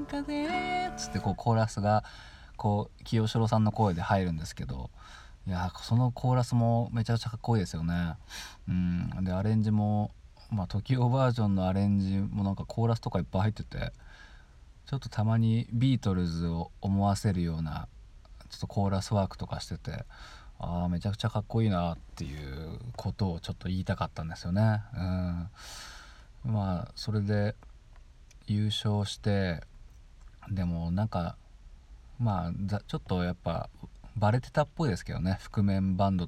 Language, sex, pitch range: Japanese, male, 85-115 Hz